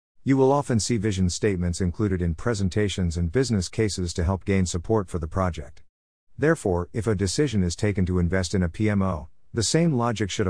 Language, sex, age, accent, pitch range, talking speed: English, male, 50-69, American, 90-110 Hz, 195 wpm